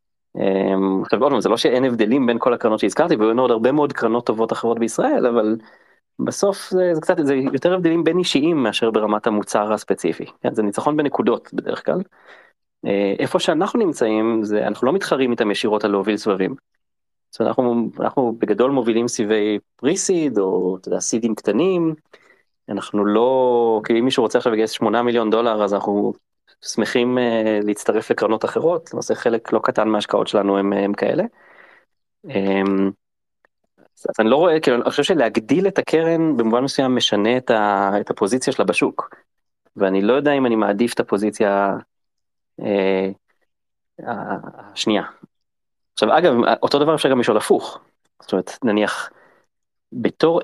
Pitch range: 105-130 Hz